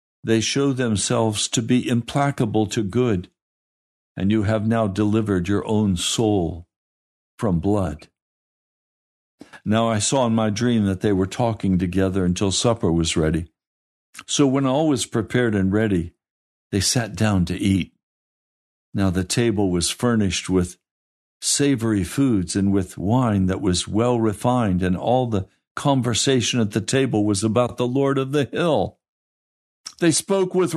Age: 60-79